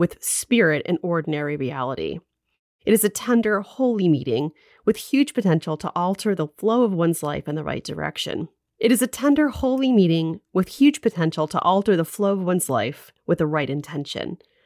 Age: 30-49